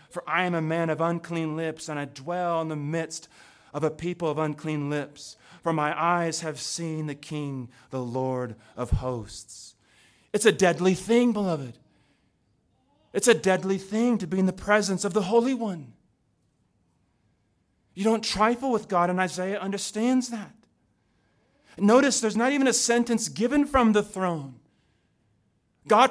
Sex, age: male, 30-49